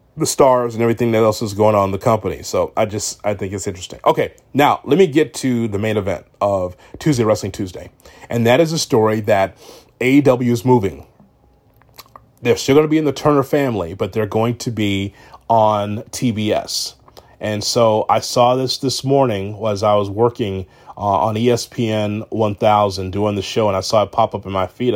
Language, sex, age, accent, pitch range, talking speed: English, male, 30-49, American, 105-130 Hz, 200 wpm